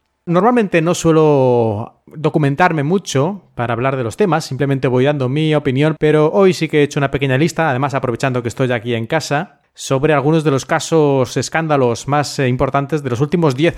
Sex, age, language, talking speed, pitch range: male, 30-49, Spanish, 185 wpm, 135-190 Hz